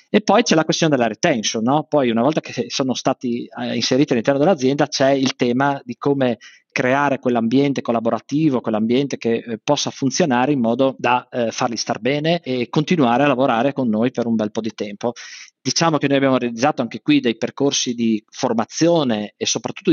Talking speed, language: 180 wpm, Italian